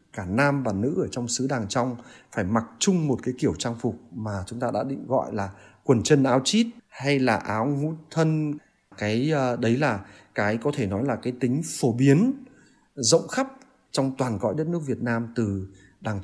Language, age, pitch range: Vietnamese, 20-39, 110-140 Hz